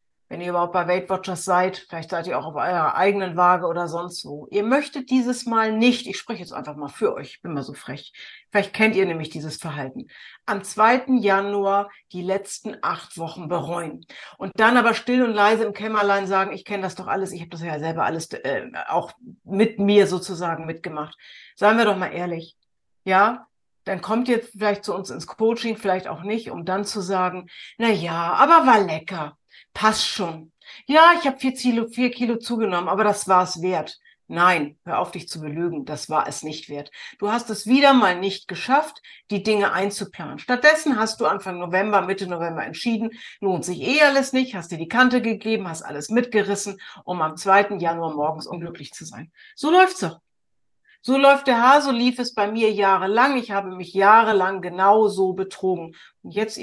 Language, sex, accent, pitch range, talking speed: German, female, German, 175-225 Hz, 195 wpm